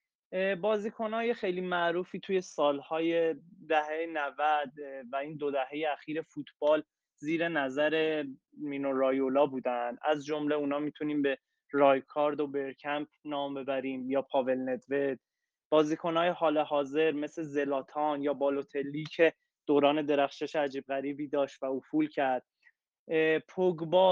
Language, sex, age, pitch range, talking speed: Persian, male, 20-39, 140-165 Hz, 120 wpm